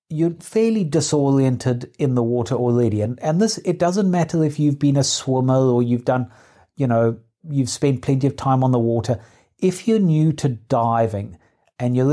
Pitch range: 115-145 Hz